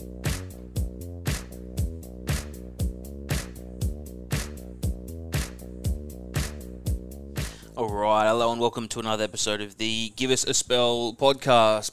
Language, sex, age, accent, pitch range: English, male, 20-39, Australian, 90-115 Hz